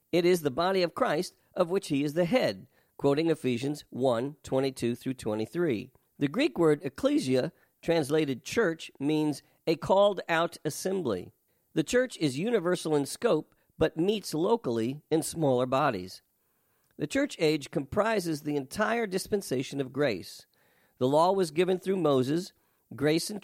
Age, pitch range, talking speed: 50-69, 135-180 Hz, 140 wpm